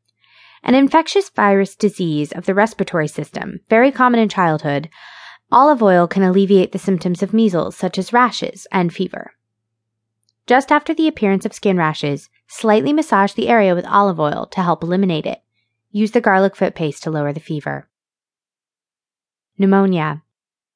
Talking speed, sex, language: 155 wpm, female, English